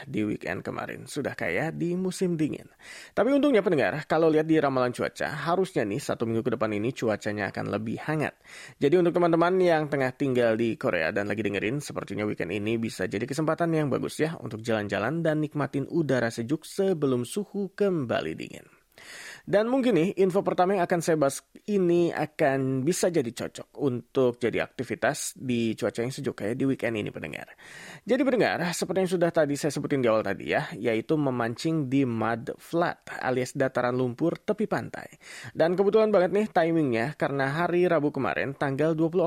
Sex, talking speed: male, 175 wpm